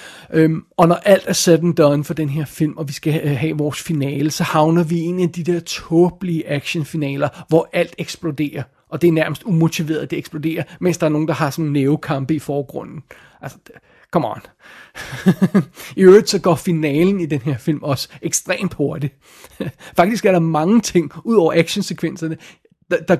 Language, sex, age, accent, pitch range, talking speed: Danish, male, 30-49, native, 155-185 Hz, 180 wpm